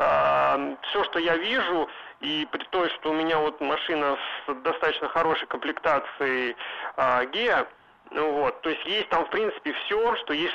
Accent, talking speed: native, 165 wpm